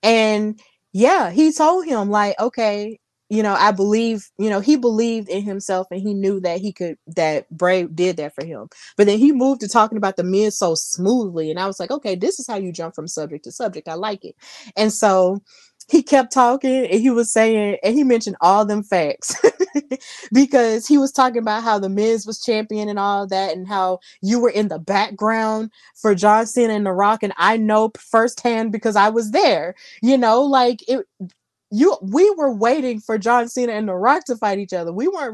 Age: 20-39